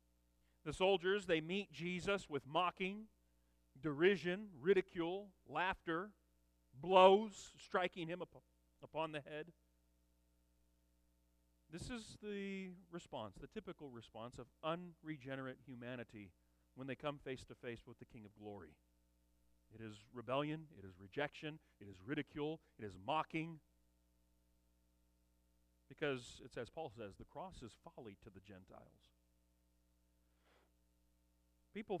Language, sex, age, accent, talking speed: English, male, 40-59, American, 120 wpm